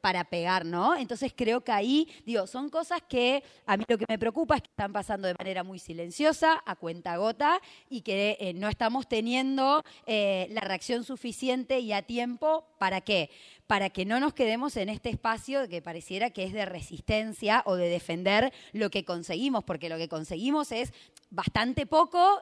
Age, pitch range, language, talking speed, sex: 20-39, 185-245 Hz, Spanish, 185 wpm, female